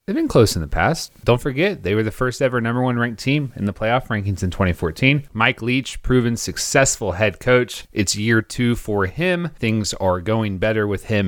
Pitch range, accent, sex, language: 90-115 Hz, American, male, English